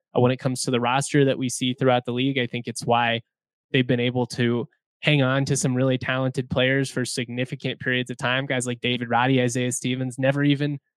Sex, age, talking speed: male, 20-39, 220 wpm